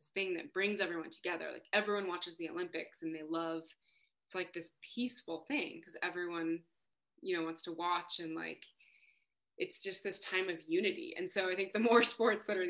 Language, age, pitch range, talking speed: English, 20-39, 165-215 Hz, 205 wpm